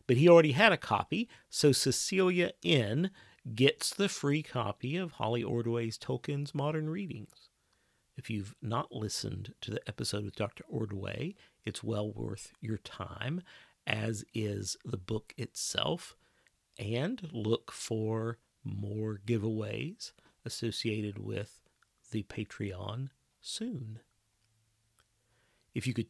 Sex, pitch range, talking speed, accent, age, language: male, 110-145 Hz, 120 wpm, American, 40-59, English